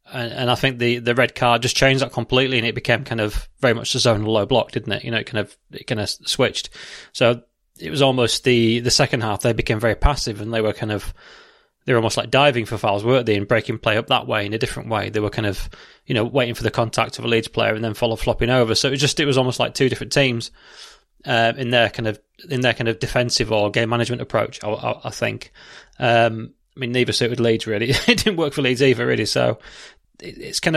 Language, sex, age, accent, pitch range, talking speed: English, male, 20-39, British, 115-130 Hz, 260 wpm